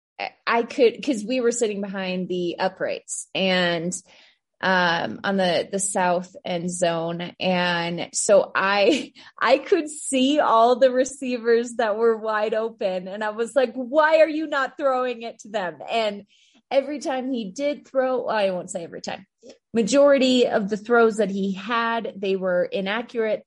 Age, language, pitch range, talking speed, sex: 20-39, English, 195-250 Hz, 165 wpm, female